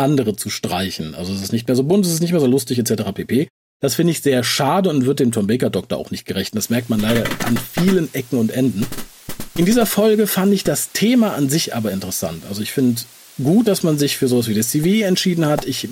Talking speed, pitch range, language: 250 wpm, 125-185 Hz, German